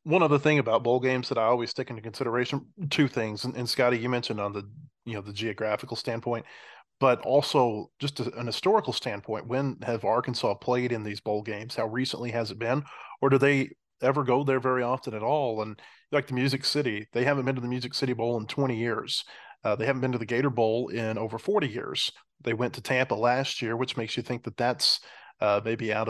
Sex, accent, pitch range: male, American, 115-130 Hz